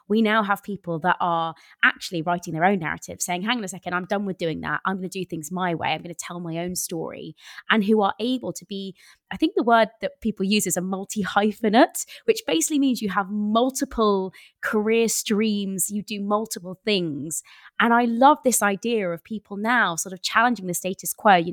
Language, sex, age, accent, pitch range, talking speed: English, female, 20-39, British, 185-240 Hz, 215 wpm